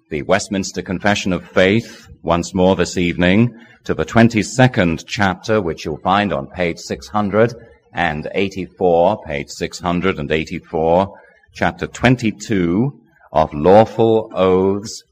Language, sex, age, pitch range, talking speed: English, male, 30-49, 85-110 Hz, 105 wpm